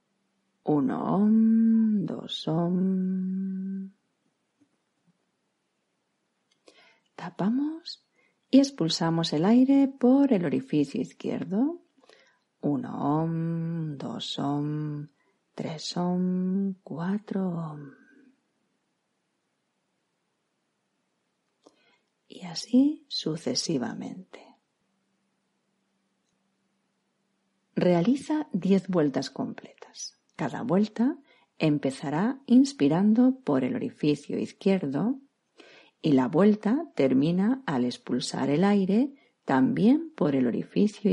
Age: 40-59